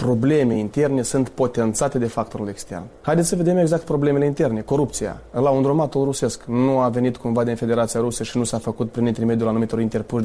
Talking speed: 185 wpm